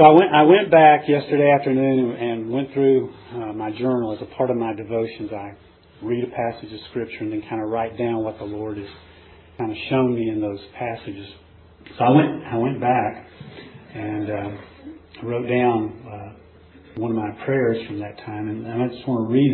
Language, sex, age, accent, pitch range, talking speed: English, male, 40-59, American, 105-135 Hz, 205 wpm